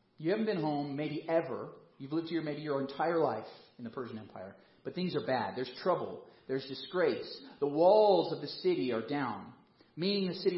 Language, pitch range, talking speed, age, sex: English, 140-190 Hz, 200 wpm, 40-59, male